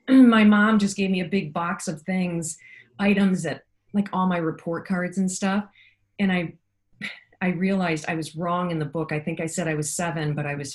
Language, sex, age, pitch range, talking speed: English, female, 40-59, 165-210 Hz, 220 wpm